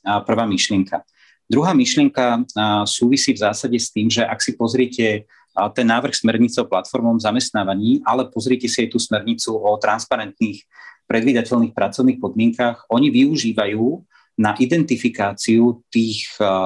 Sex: male